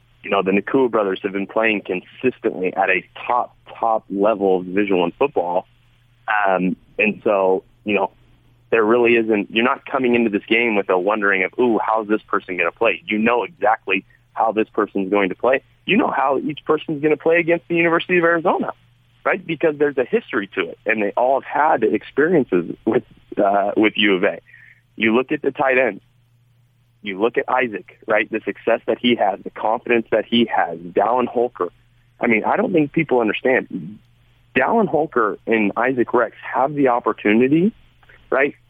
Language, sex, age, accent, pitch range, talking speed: English, male, 30-49, American, 110-125 Hz, 190 wpm